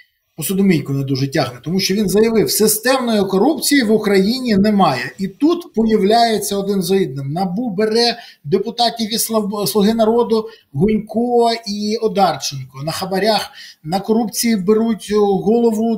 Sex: male